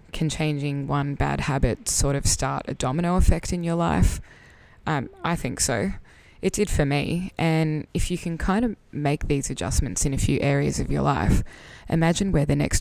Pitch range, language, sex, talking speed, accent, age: 135-160 Hz, English, female, 195 wpm, Australian, 20-39